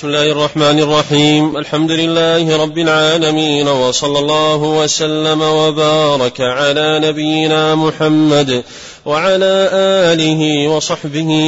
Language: Arabic